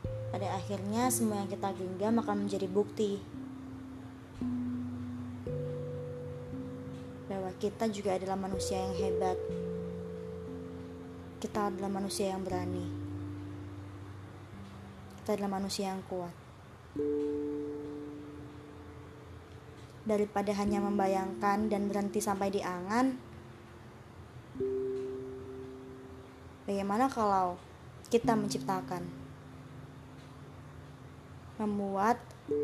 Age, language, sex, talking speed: 20-39, Indonesian, male, 70 wpm